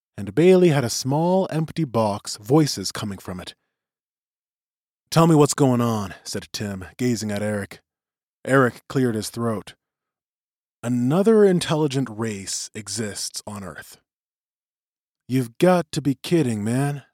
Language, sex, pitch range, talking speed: English, male, 105-160 Hz, 130 wpm